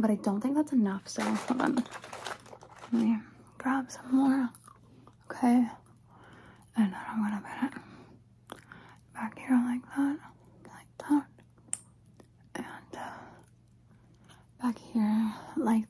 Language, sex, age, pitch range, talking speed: English, female, 20-39, 215-260 Hz, 115 wpm